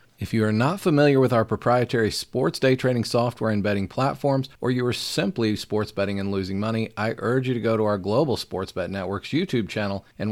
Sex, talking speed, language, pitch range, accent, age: male, 220 wpm, English, 100-115 Hz, American, 40-59